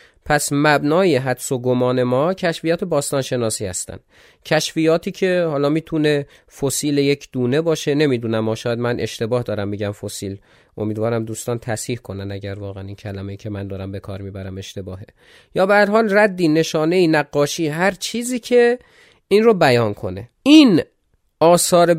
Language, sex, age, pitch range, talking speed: Persian, male, 30-49, 130-190 Hz, 155 wpm